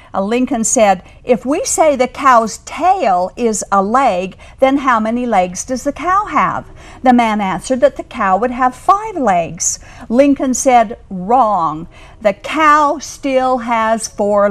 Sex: female